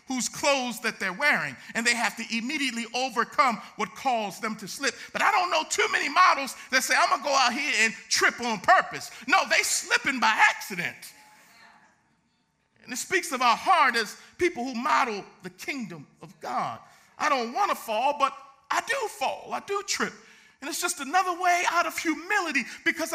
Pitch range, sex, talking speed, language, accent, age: 225-305 Hz, male, 195 wpm, English, American, 50-69